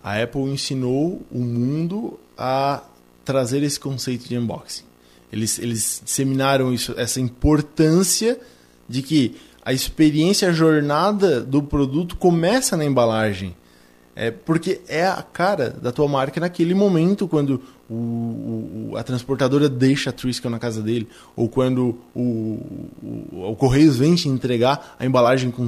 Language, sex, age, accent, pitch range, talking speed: Portuguese, male, 20-39, Brazilian, 125-170 Hz, 145 wpm